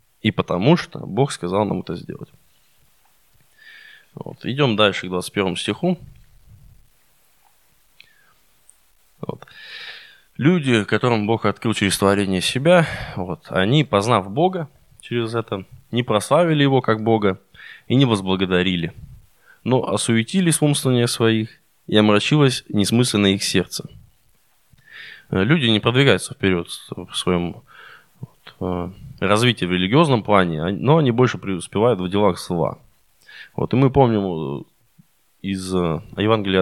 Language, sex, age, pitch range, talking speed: Russian, male, 20-39, 95-130 Hz, 105 wpm